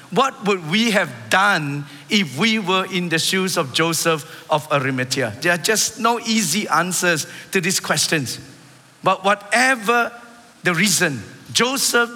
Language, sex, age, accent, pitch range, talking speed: English, male, 50-69, Malaysian, 165-220 Hz, 145 wpm